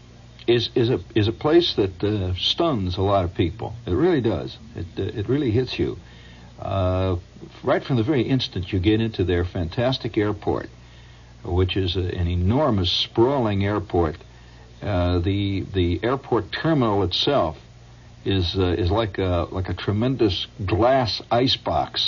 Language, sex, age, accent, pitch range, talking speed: English, male, 60-79, American, 90-115 Hz, 155 wpm